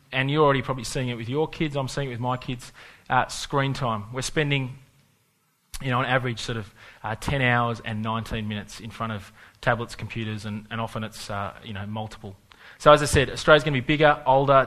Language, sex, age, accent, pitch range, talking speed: English, male, 20-39, Australian, 120-145 Hz, 225 wpm